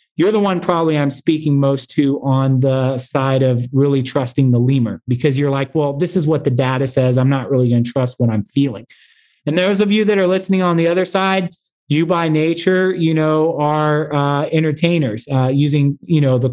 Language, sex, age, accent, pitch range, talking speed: English, male, 30-49, American, 130-160 Hz, 215 wpm